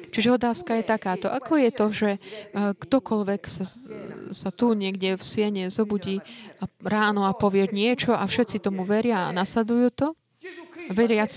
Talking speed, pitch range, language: 155 wpm, 190-235 Hz, Slovak